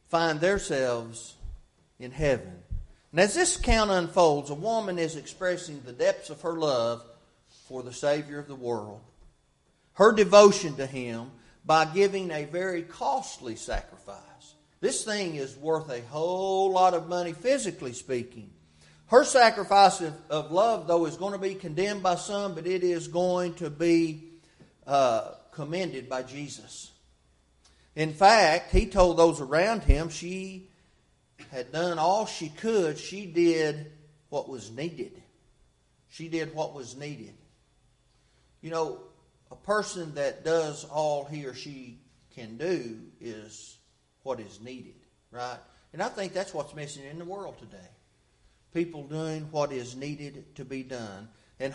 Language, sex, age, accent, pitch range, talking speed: English, male, 40-59, American, 125-180 Hz, 145 wpm